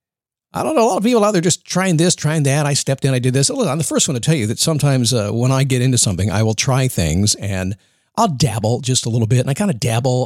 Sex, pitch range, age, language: male, 115-165 Hz, 50-69, English